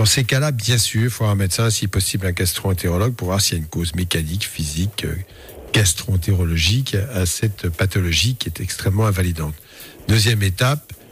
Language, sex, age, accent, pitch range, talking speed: French, male, 50-69, French, 100-125 Hz, 180 wpm